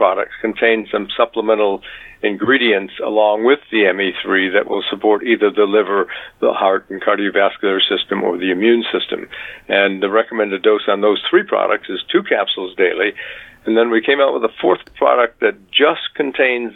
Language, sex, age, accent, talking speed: English, male, 60-79, American, 170 wpm